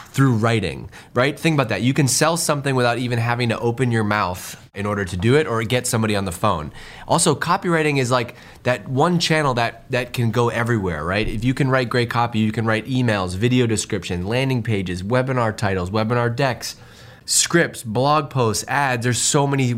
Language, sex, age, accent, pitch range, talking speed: English, male, 20-39, American, 110-130 Hz, 200 wpm